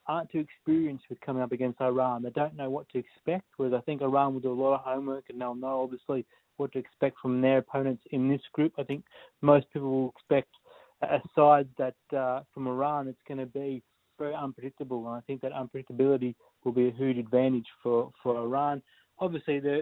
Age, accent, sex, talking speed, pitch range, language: 30-49, Australian, male, 210 wpm, 125-145 Hz, English